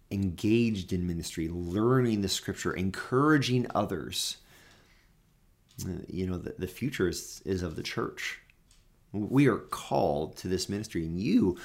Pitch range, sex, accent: 95-125 Hz, male, American